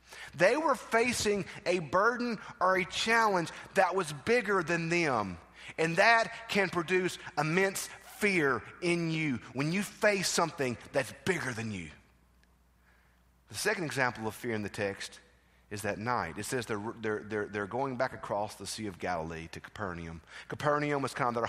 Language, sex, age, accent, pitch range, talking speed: English, male, 30-49, American, 90-150 Hz, 170 wpm